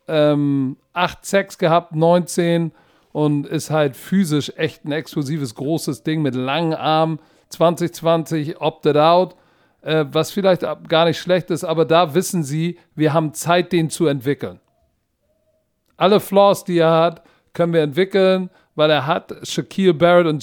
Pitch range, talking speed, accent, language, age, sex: 150-180 Hz, 155 wpm, German, German, 50-69, male